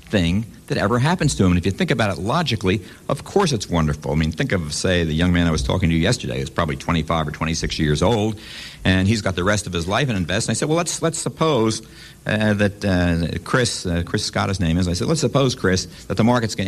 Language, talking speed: English, 265 wpm